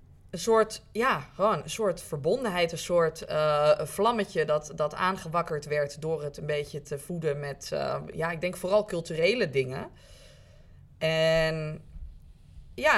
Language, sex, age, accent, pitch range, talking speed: Dutch, female, 20-39, Dutch, 145-175 Hz, 150 wpm